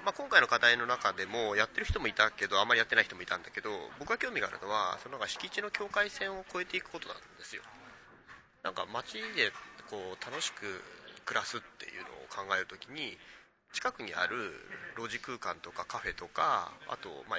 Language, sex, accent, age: Japanese, male, native, 30-49